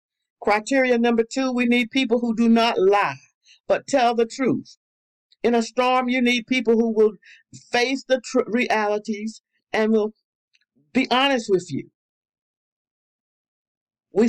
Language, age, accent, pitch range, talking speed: English, 50-69, American, 205-255 Hz, 140 wpm